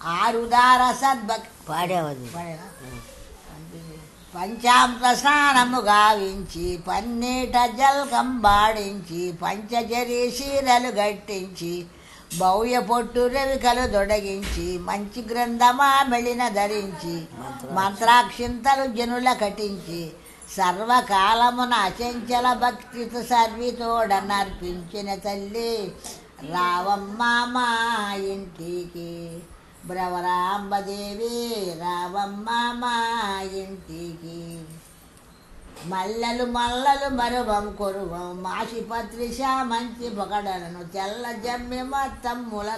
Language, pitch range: Telugu, 190-245 Hz